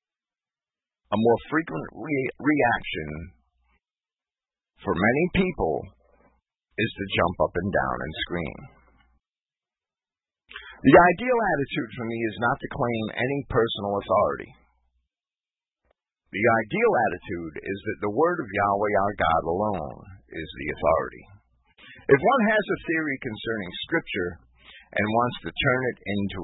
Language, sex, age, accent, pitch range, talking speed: English, male, 50-69, American, 80-115 Hz, 125 wpm